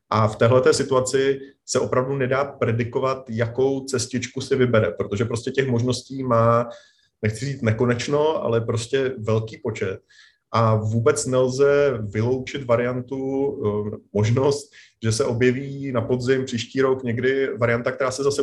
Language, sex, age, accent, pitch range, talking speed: Czech, male, 30-49, native, 110-135 Hz, 135 wpm